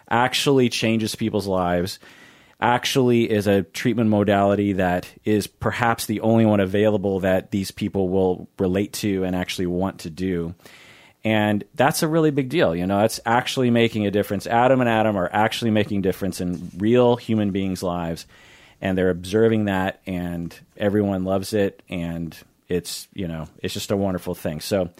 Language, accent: English, American